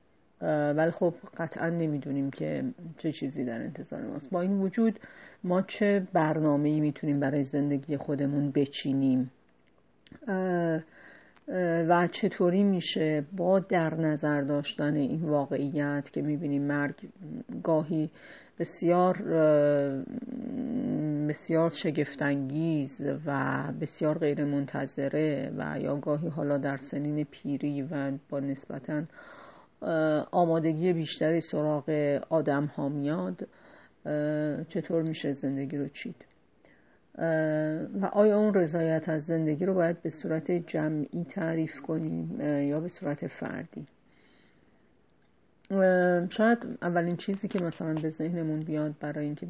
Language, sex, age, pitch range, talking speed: Persian, female, 40-59, 145-170 Hz, 110 wpm